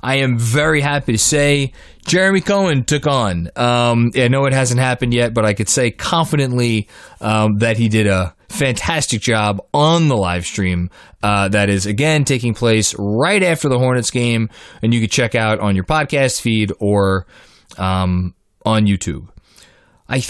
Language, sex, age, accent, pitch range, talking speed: English, male, 20-39, American, 105-140 Hz, 170 wpm